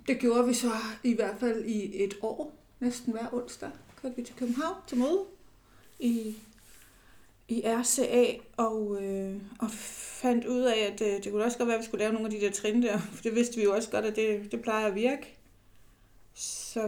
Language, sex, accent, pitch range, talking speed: Danish, female, native, 210-250 Hz, 210 wpm